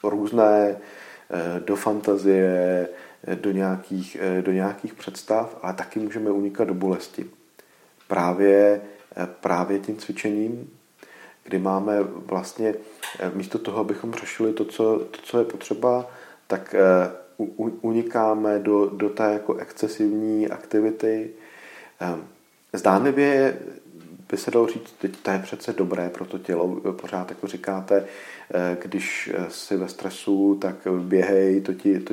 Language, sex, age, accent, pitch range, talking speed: Czech, male, 40-59, native, 95-110 Hz, 110 wpm